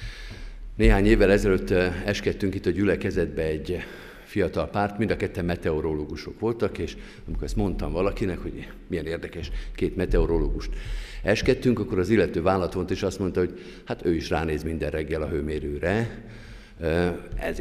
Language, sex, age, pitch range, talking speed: Hungarian, male, 50-69, 85-110 Hz, 150 wpm